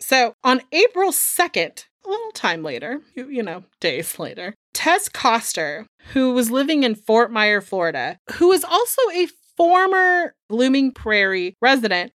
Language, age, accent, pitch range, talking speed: English, 30-49, American, 195-270 Hz, 150 wpm